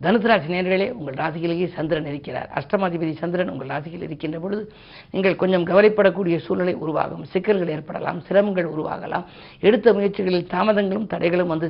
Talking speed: 135 wpm